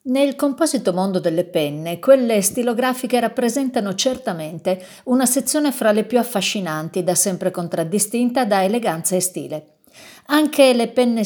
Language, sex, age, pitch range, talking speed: Italian, female, 50-69, 190-265 Hz, 135 wpm